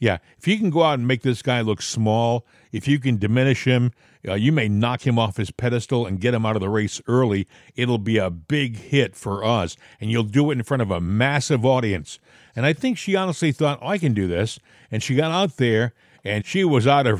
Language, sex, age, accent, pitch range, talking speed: English, male, 50-69, American, 115-150 Hz, 250 wpm